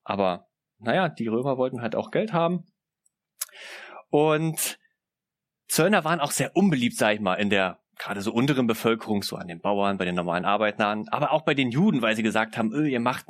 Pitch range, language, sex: 110-155 Hz, German, male